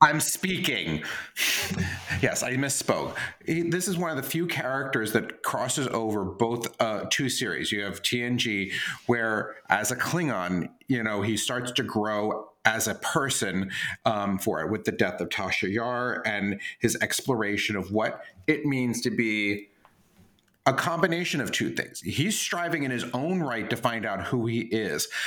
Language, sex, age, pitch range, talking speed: English, male, 40-59, 110-140 Hz, 165 wpm